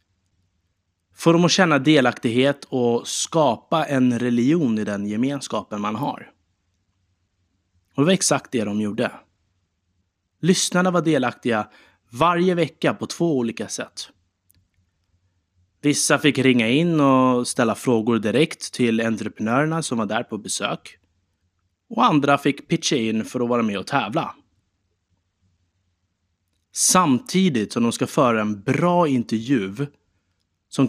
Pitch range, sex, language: 90-140 Hz, male, Swedish